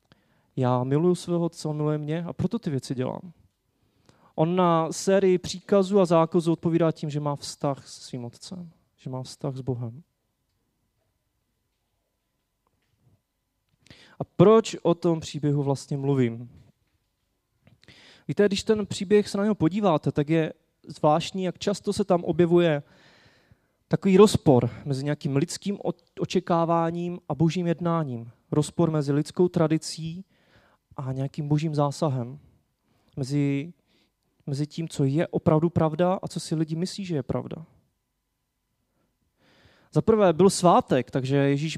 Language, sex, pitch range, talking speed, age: Czech, male, 140-175 Hz, 130 wpm, 30-49